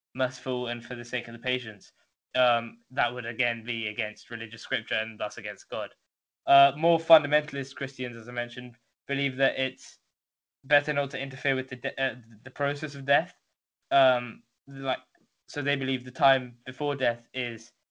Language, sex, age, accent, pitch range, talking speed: English, male, 10-29, British, 115-130 Hz, 175 wpm